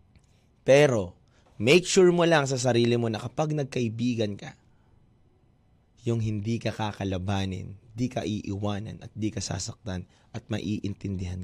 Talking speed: 130 wpm